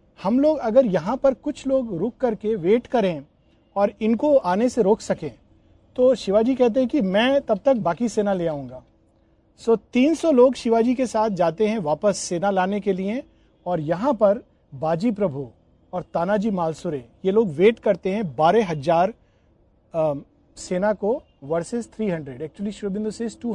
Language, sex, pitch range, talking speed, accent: Hindi, male, 170-235 Hz, 170 wpm, native